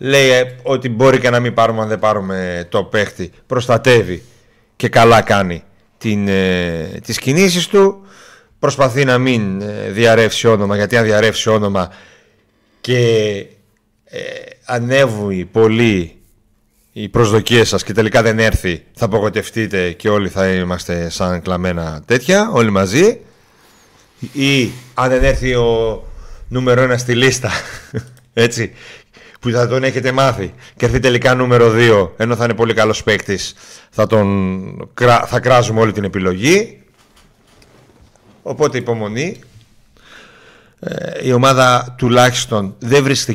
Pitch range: 95-125 Hz